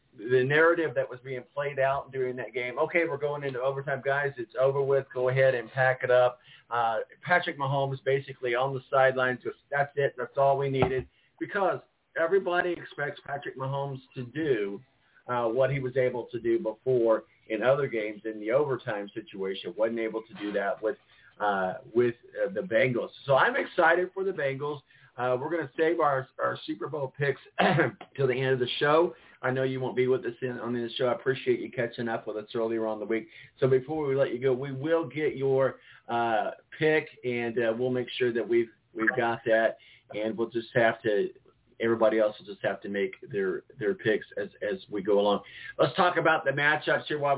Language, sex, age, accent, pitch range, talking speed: English, male, 50-69, American, 120-140 Hz, 205 wpm